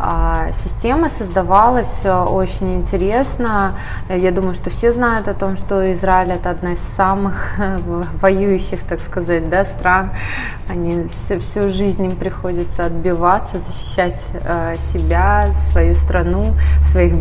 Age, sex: 20-39, female